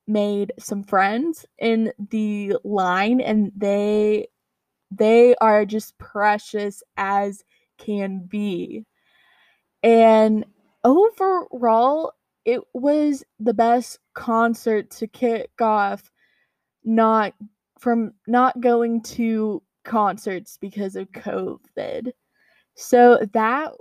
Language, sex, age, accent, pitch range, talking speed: English, female, 10-29, American, 210-250 Hz, 90 wpm